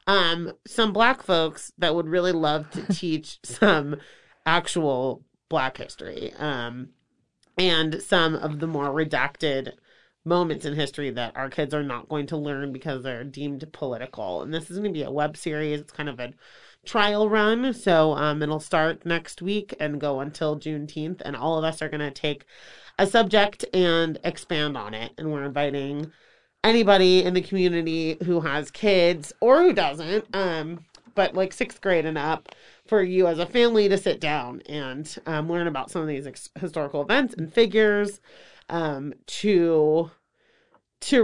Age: 30-49